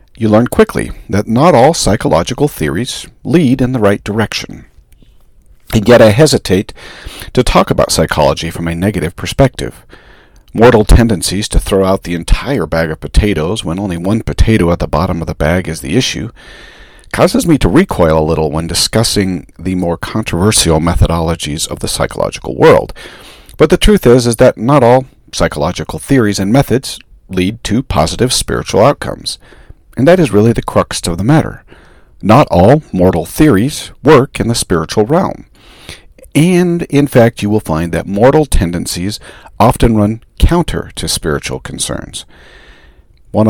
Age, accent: 50-69, American